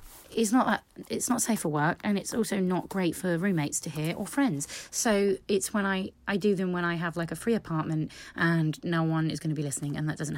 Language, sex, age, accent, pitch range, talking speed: English, female, 30-49, British, 160-210 Hz, 255 wpm